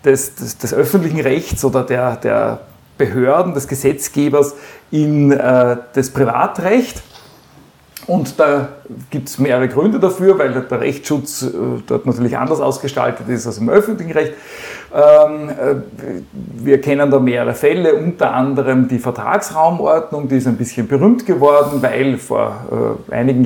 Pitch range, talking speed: 125-150 Hz, 140 wpm